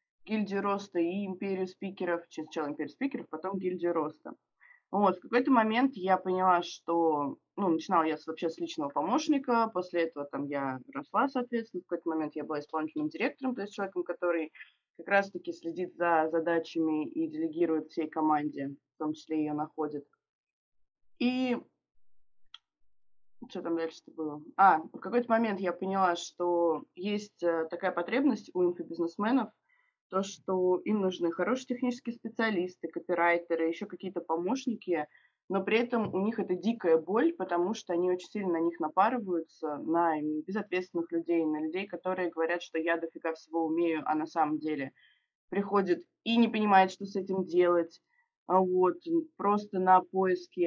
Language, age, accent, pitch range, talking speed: Russian, 20-39, native, 165-215 Hz, 150 wpm